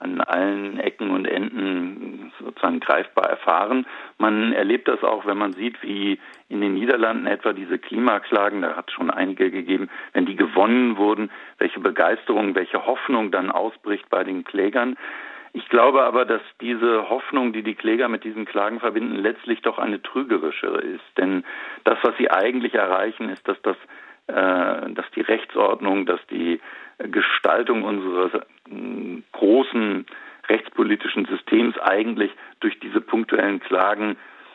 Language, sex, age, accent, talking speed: German, male, 50-69, German, 145 wpm